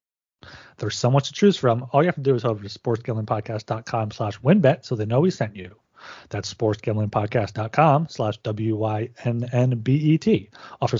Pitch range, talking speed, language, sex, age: 115-155 Hz, 160 wpm, English, male, 30-49